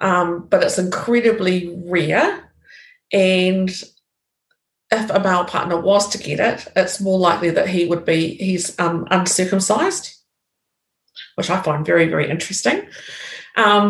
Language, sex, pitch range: English, female, 160-195 Hz